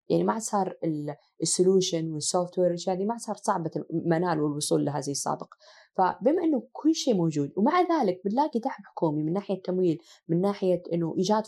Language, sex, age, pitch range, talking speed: Arabic, female, 20-39, 170-230 Hz, 165 wpm